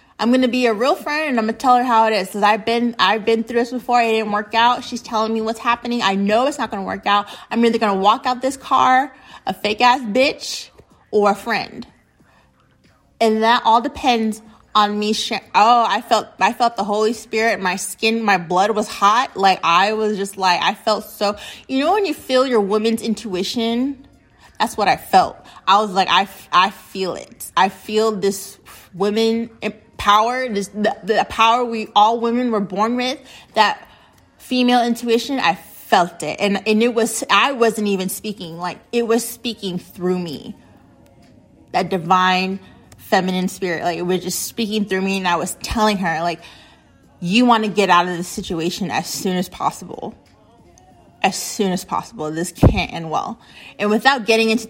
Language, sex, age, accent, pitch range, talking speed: English, female, 20-39, American, 190-235 Hz, 195 wpm